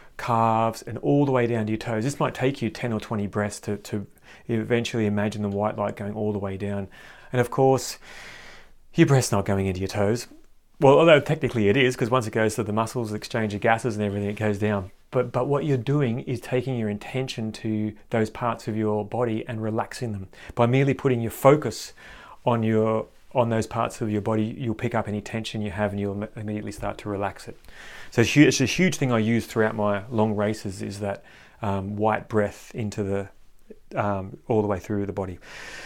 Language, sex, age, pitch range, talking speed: English, male, 30-49, 105-130 Hz, 225 wpm